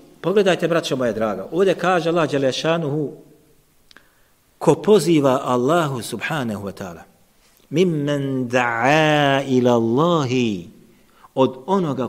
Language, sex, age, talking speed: English, male, 50-69, 100 wpm